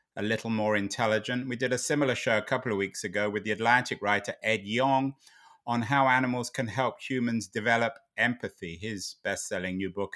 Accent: British